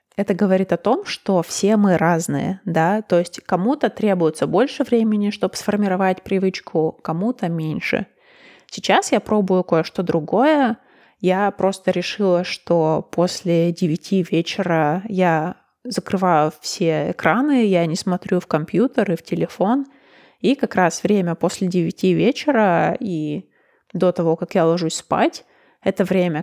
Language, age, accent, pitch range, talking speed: Russian, 20-39, native, 165-205 Hz, 135 wpm